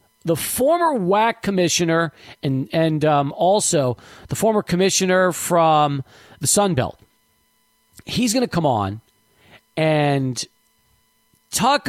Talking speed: 110 wpm